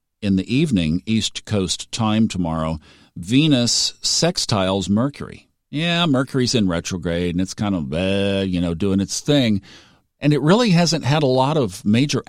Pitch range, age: 95-130 Hz, 50-69